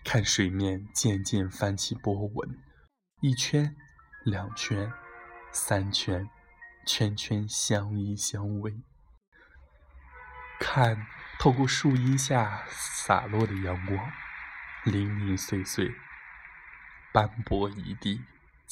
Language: Chinese